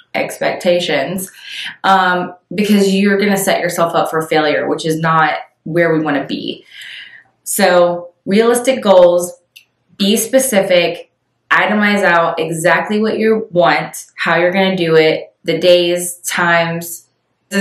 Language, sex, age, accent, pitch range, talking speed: English, female, 20-39, American, 165-195 Hz, 135 wpm